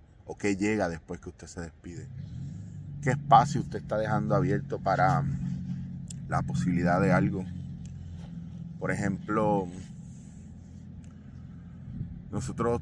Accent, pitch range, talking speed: Venezuelan, 90-105 Hz, 105 wpm